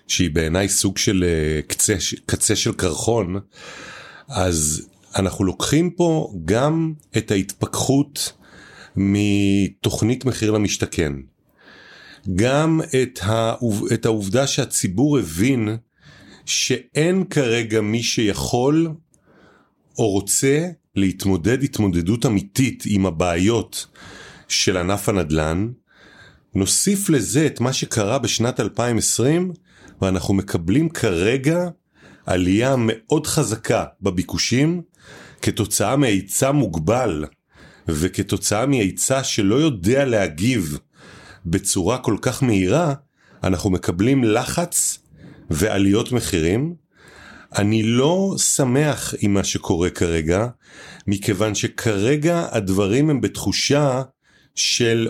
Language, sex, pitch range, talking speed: Hebrew, male, 95-140 Hz, 90 wpm